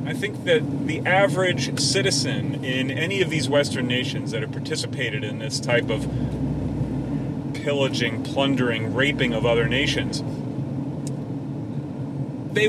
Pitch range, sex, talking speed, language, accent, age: 130-140 Hz, male, 125 wpm, English, American, 40-59